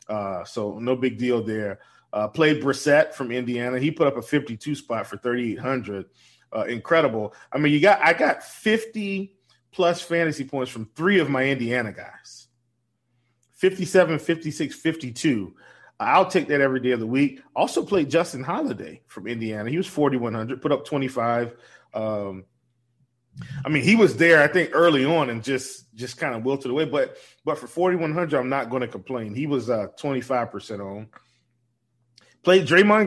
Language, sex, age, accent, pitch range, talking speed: English, male, 30-49, American, 120-155 Hz, 165 wpm